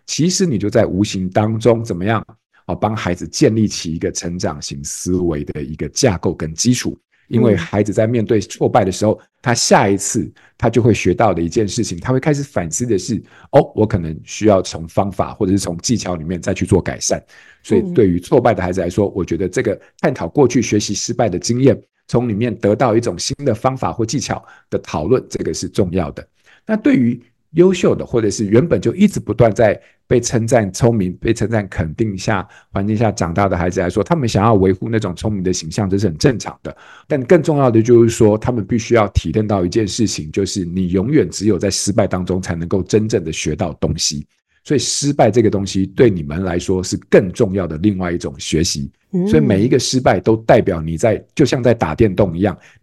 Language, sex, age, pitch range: Chinese, male, 50-69, 90-115 Hz